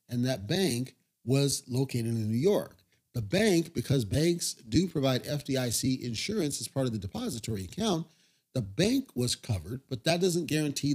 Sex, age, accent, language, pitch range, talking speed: male, 40-59, American, English, 125-165 Hz, 165 wpm